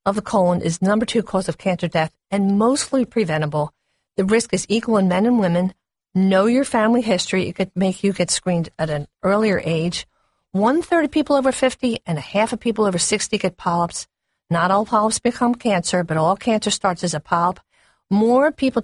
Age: 50-69